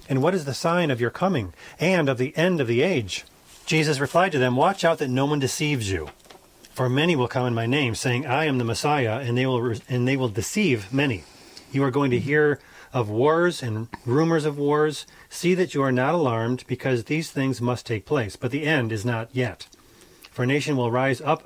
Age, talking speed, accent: 40-59, 230 wpm, American